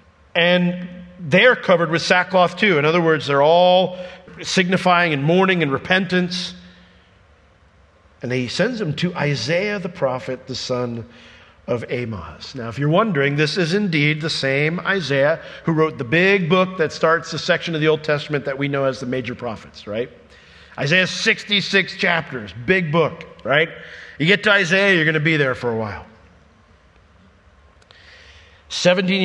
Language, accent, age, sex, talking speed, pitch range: English, American, 50-69, male, 160 wpm, 115-170 Hz